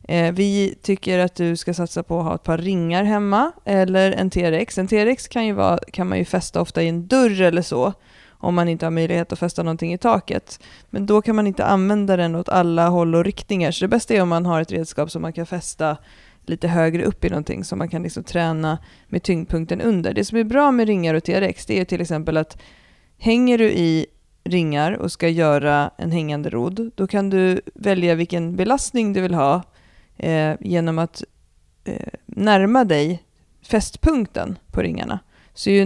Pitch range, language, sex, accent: 165-195 Hz, Swedish, female, native